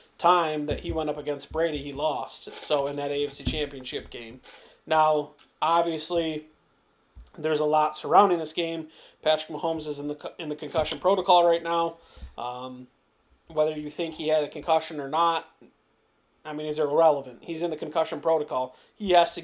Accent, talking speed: American, 175 wpm